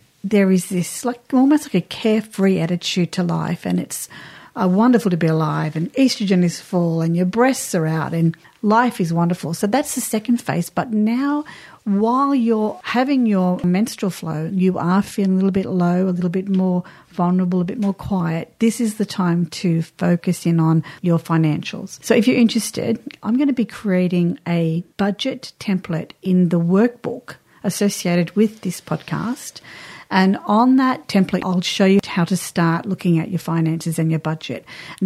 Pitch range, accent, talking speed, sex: 175-215 Hz, Australian, 185 wpm, female